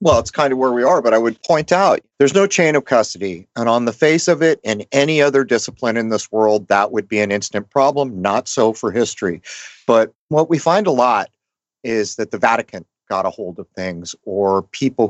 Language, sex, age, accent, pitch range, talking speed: English, male, 40-59, American, 105-135 Hz, 225 wpm